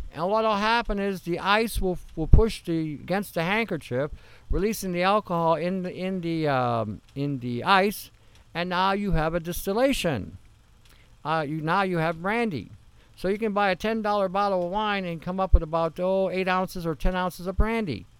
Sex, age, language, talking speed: male, 50-69, English, 195 wpm